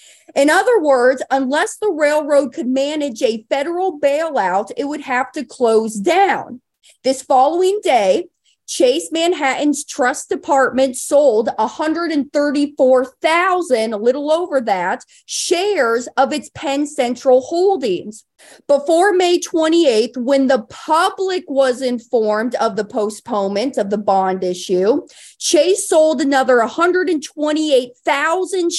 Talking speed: 115 wpm